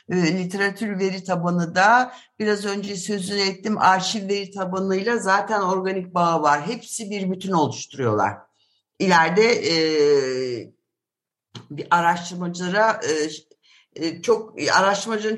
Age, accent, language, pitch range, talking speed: 60-79, native, Turkish, 155-200 Hz, 100 wpm